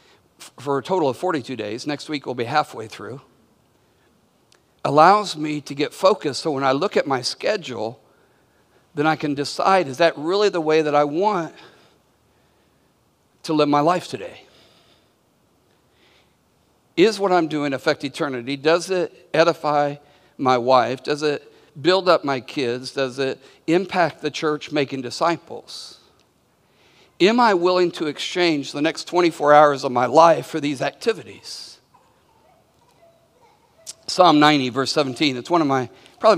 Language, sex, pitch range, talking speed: English, male, 150-220 Hz, 145 wpm